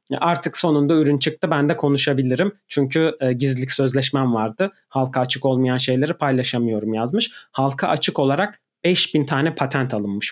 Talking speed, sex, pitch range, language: 140 wpm, male, 125-160 Hz, Turkish